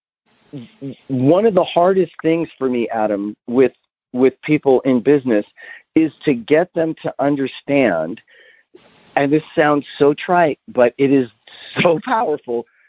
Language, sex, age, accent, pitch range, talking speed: English, male, 40-59, American, 130-170 Hz, 135 wpm